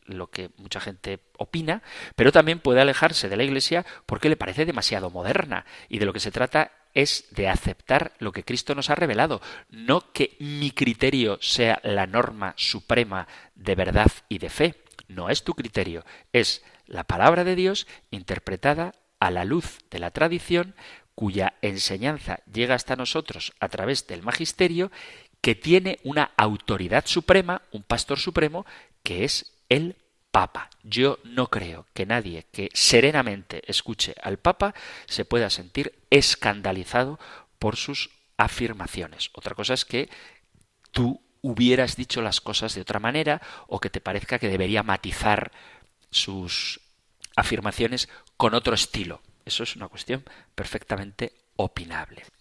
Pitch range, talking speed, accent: 100-140 Hz, 150 wpm, Spanish